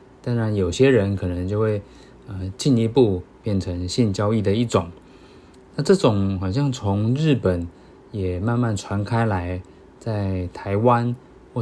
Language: Chinese